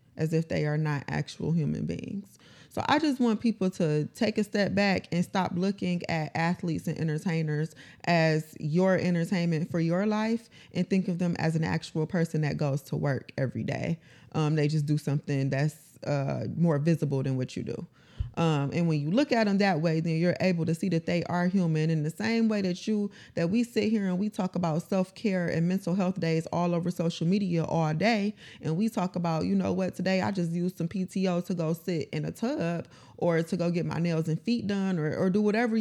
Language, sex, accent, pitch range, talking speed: English, female, American, 160-195 Hz, 225 wpm